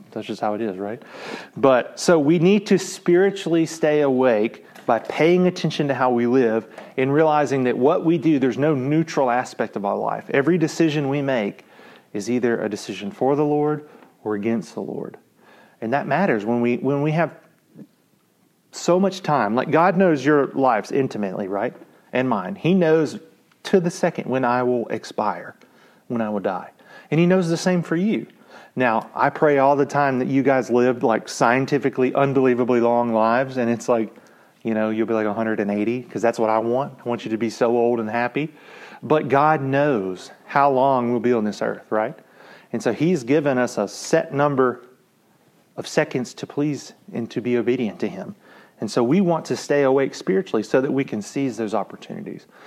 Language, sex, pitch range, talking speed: English, male, 120-155 Hz, 195 wpm